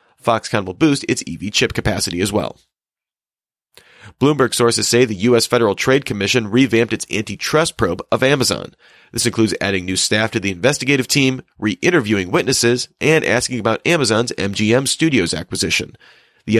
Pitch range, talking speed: 105-125 Hz, 150 wpm